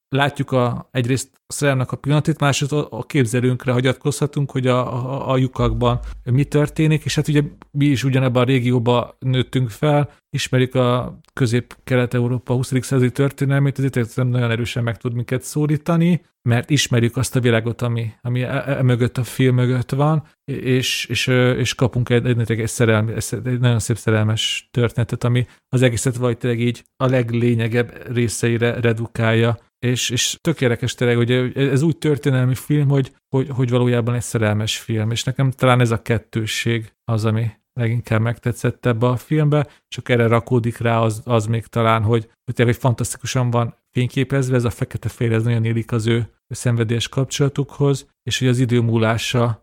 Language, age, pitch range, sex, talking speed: Hungarian, 40-59, 115-130 Hz, male, 165 wpm